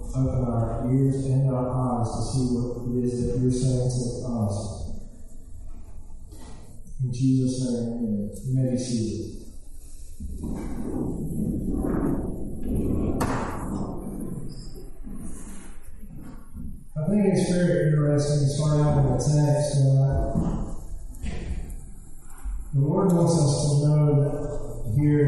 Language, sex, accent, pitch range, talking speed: English, male, American, 125-165 Hz, 95 wpm